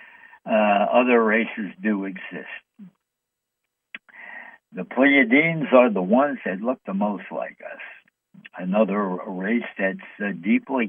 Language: English